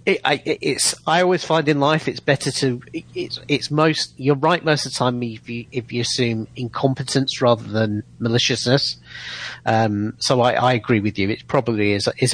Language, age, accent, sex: English, 40-59, British, male